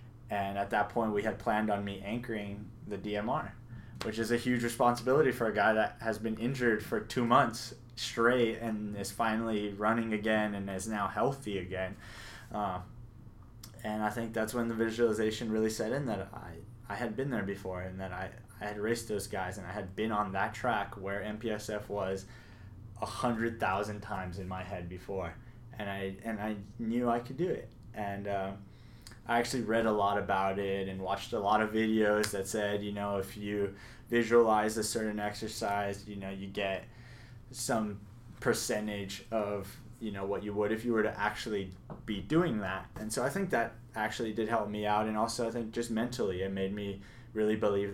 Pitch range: 100-115 Hz